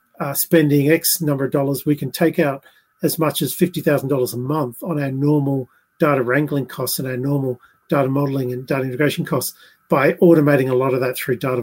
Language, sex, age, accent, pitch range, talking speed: English, male, 40-59, Australian, 130-160 Hz, 200 wpm